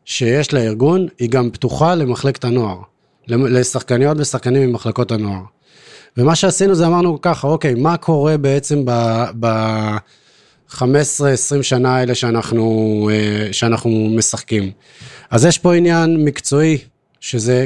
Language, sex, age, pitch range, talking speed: Hebrew, male, 30-49, 120-150 Hz, 110 wpm